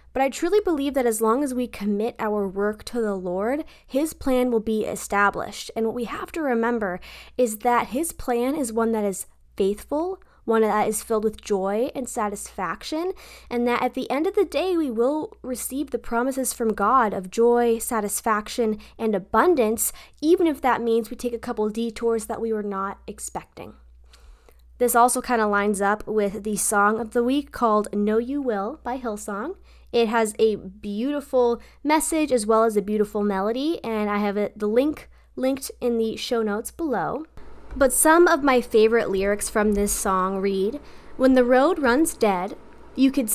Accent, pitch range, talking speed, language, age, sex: American, 210-260 Hz, 185 wpm, English, 10-29, female